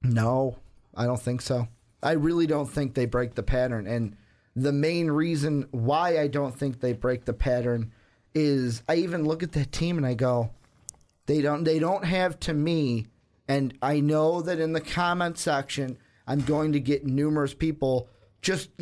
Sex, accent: male, American